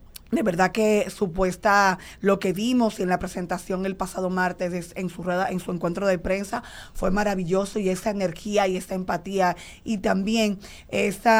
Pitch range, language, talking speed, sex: 185-205 Hz, Spanish, 165 wpm, female